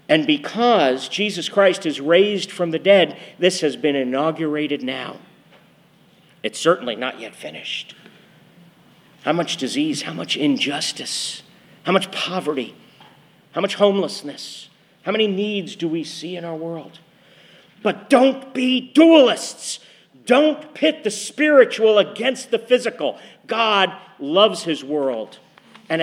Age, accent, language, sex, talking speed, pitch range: 50-69, American, English, male, 130 wpm, 150-205 Hz